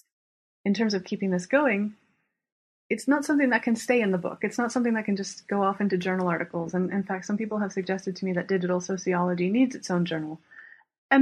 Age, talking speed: 30-49, 230 wpm